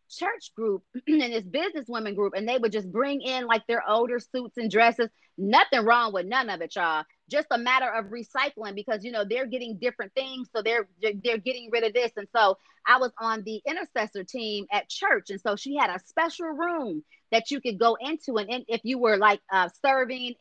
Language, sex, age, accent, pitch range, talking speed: English, female, 30-49, American, 200-255 Hz, 220 wpm